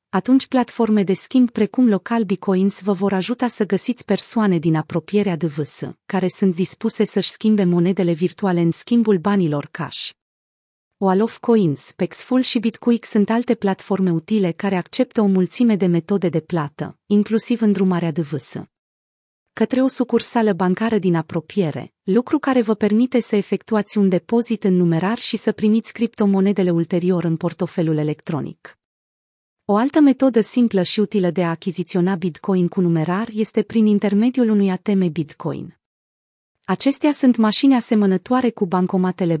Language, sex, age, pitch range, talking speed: Romanian, female, 30-49, 175-225 Hz, 145 wpm